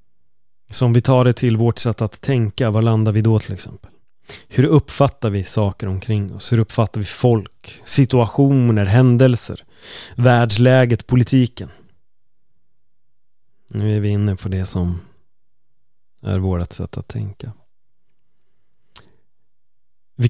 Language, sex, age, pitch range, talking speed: Swedish, male, 30-49, 105-125 Hz, 125 wpm